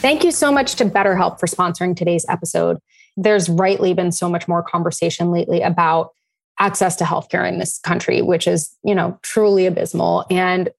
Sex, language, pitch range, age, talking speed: female, English, 170-185 Hz, 20-39, 180 wpm